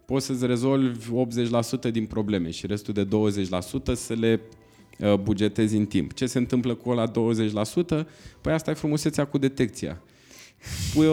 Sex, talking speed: male, 150 wpm